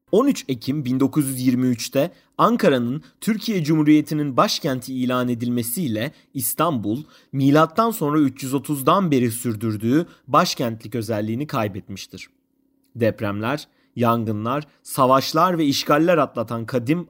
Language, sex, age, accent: Turkish, male, 30-49, native